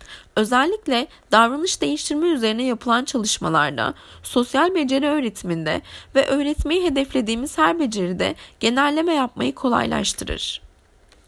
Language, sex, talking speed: Turkish, female, 90 wpm